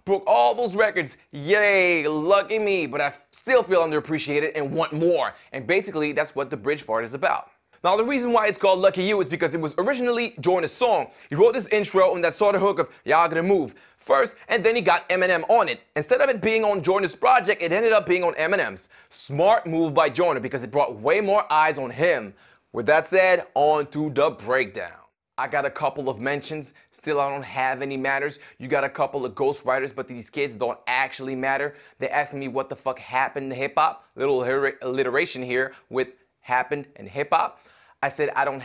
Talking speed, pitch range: 215 wpm, 140-195 Hz